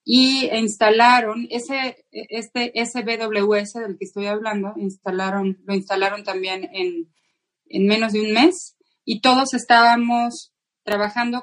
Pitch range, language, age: 200-245 Hz, Spanish, 30-49